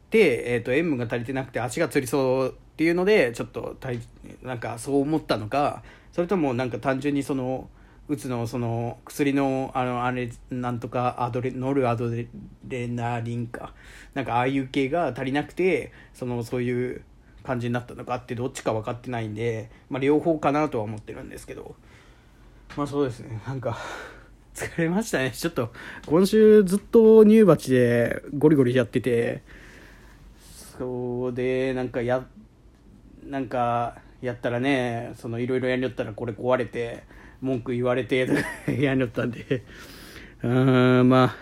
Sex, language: male, Japanese